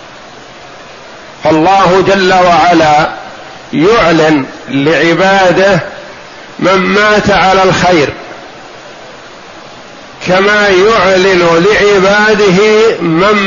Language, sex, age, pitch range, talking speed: Arabic, male, 50-69, 175-200 Hz, 60 wpm